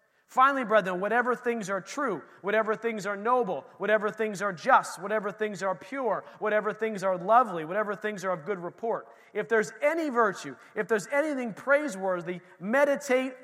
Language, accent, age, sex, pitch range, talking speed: English, American, 40-59, male, 185-230 Hz, 165 wpm